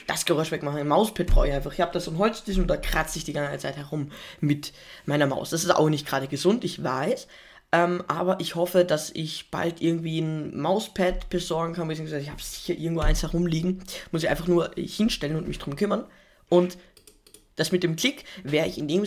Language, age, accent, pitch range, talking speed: German, 20-39, German, 155-190 Hz, 210 wpm